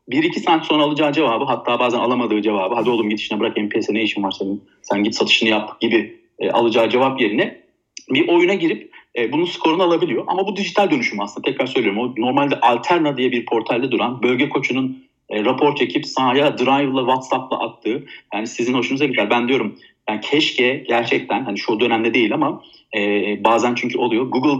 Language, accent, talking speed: Turkish, native, 185 wpm